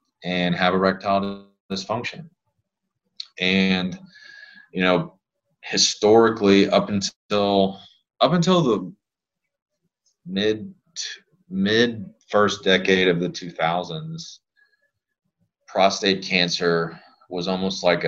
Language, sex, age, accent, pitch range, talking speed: English, male, 20-39, American, 90-115 Hz, 85 wpm